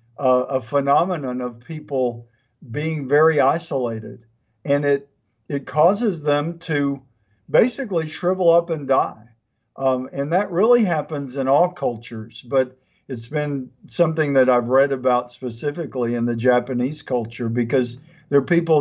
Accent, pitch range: American, 130-165 Hz